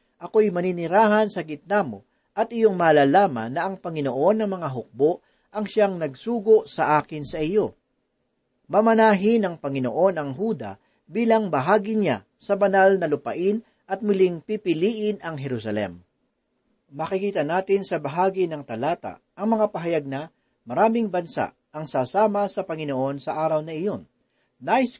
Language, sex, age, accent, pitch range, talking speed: Filipino, male, 40-59, native, 145-205 Hz, 140 wpm